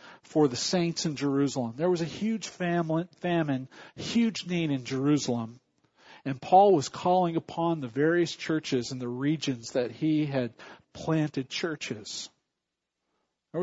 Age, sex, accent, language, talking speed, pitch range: 50-69, male, American, English, 140 wpm, 130-160 Hz